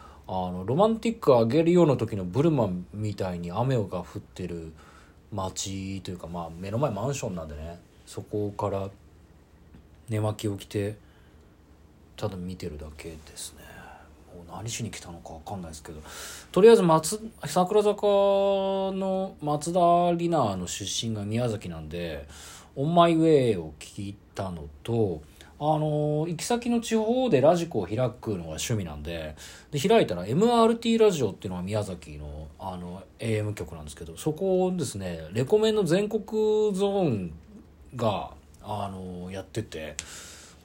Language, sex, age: Japanese, male, 40-59